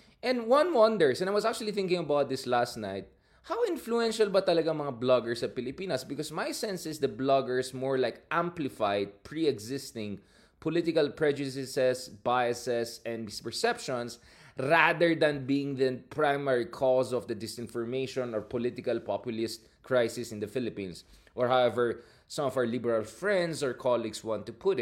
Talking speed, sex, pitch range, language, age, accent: 150 wpm, male, 120-170 Hz, English, 20-39, Filipino